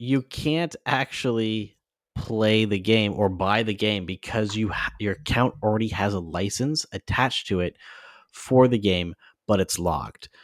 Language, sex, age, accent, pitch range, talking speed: English, male, 30-49, American, 95-125 Hz, 160 wpm